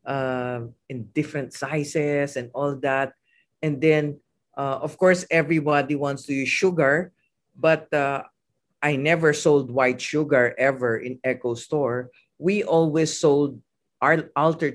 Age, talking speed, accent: 50-69, 135 wpm, Filipino